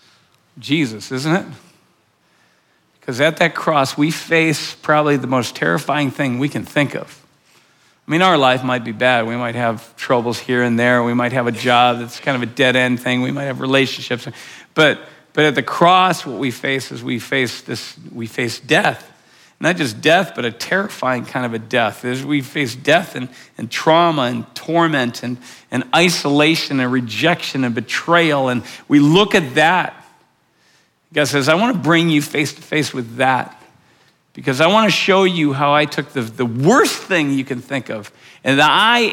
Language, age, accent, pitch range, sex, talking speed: English, 50-69, American, 125-155 Hz, male, 190 wpm